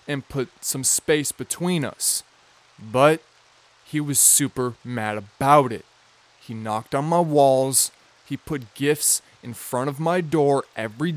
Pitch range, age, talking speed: 125-155 Hz, 20-39, 145 wpm